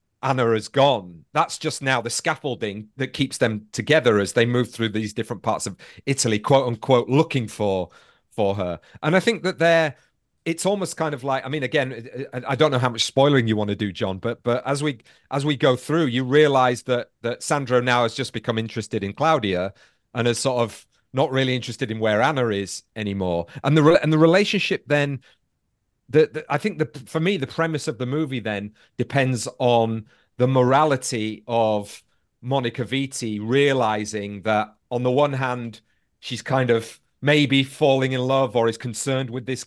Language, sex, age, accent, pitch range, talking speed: English, male, 30-49, British, 115-140 Hz, 190 wpm